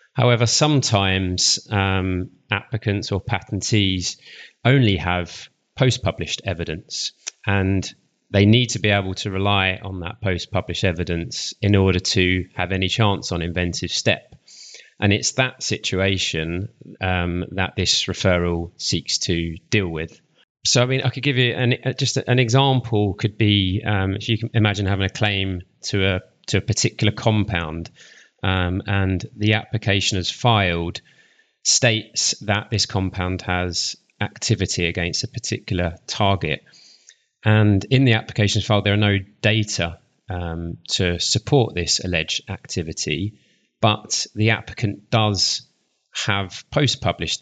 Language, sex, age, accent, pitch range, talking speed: English, male, 30-49, British, 90-115 Hz, 135 wpm